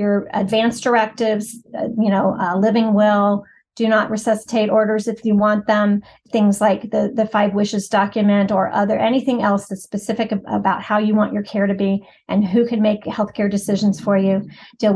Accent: American